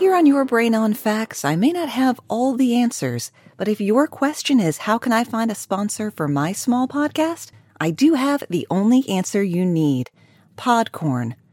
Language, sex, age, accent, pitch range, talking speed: English, female, 40-59, American, 150-240 Hz, 195 wpm